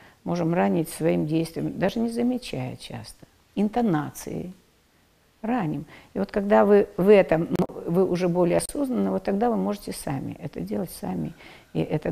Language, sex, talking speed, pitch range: Russian, female, 150 wpm, 160-230 Hz